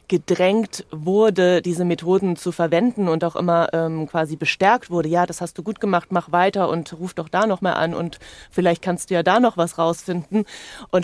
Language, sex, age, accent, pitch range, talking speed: German, female, 20-39, German, 160-180 Hz, 205 wpm